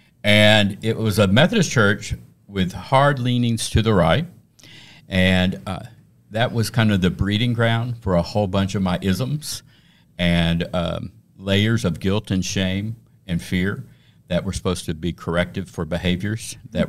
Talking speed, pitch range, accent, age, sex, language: 165 wpm, 90-110 Hz, American, 50-69, male, English